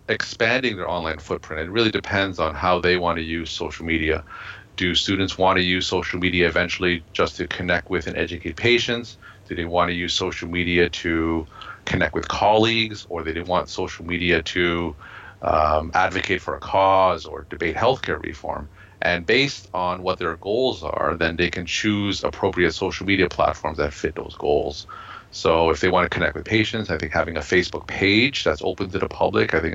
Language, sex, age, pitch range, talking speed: English, male, 30-49, 85-100 Hz, 195 wpm